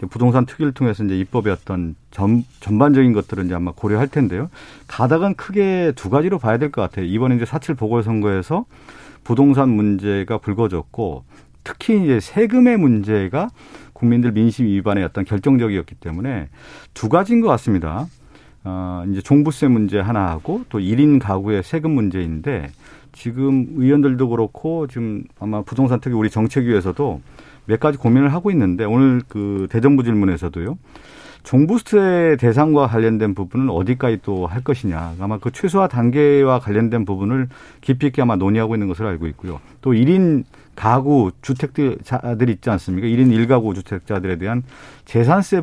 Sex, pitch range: male, 105-145 Hz